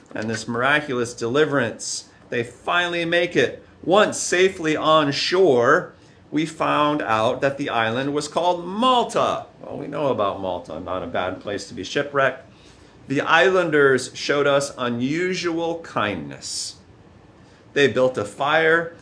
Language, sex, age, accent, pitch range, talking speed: English, male, 40-59, American, 115-175 Hz, 135 wpm